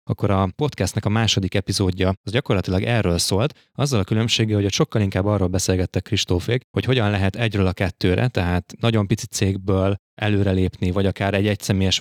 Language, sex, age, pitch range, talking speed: Hungarian, male, 20-39, 95-110 Hz, 175 wpm